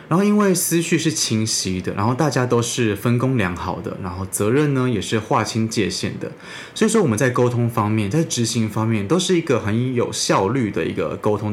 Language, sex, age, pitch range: Chinese, male, 20-39, 100-140 Hz